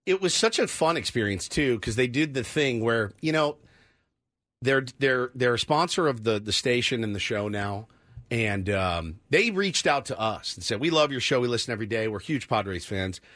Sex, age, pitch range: male, 40-59, 105-145 Hz